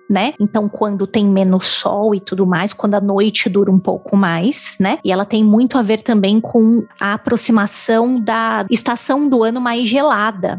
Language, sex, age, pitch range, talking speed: Portuguese, female, 20-39, 205-260 Hz, 185 wpm